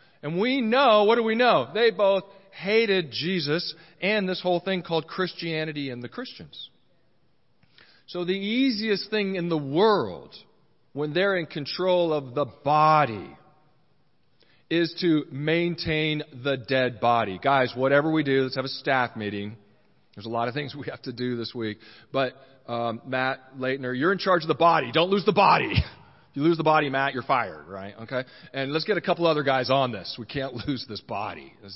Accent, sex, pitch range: American, male, 135-215 Hz